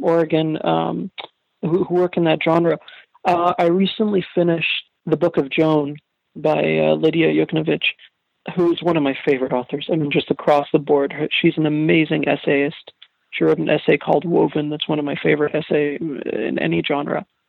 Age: 40-59